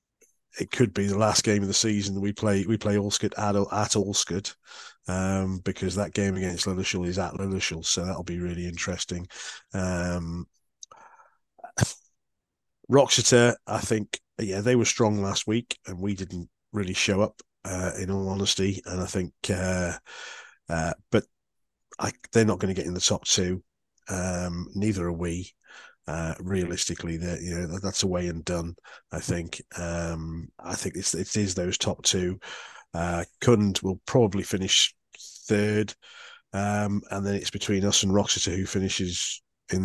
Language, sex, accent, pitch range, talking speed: English, male, British, 90-105 Hz, 165 wpm